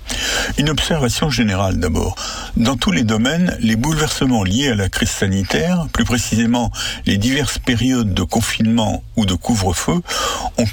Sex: male